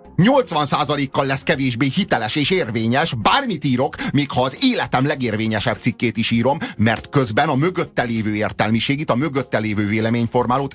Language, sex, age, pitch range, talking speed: Hungarian, male, 40-59, 105-140 Hz, 145 wpm